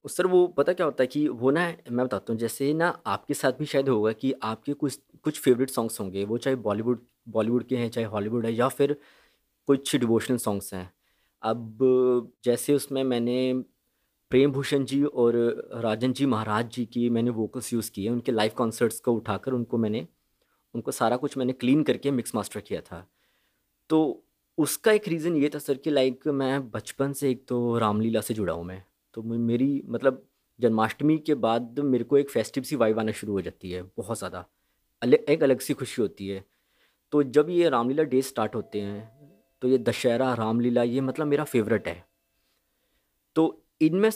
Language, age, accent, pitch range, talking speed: Hindi, 20-39, native, 115-145 Hz, 190 wpm